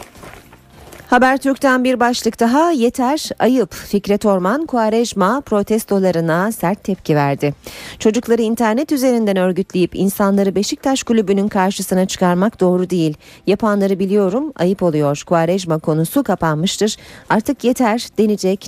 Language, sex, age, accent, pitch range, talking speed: Turkish, female, 40-59, native, 175-235 Hz, 110 wpm